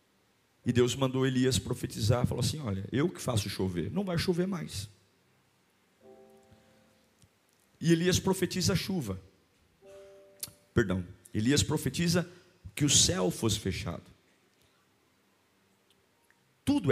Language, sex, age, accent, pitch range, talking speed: Portuguese, male, 50-69, Brazilian, 95-145 Hz, 105 wpm